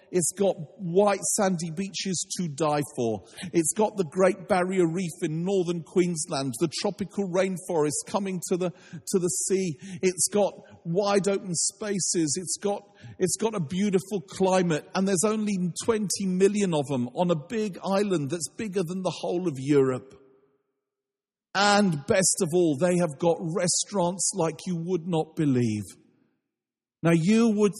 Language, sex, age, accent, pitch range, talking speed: English, male, 40-59, British, 150-195 Hz, 150 wpm